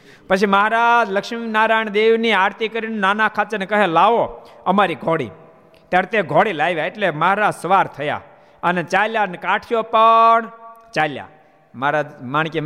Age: 50-69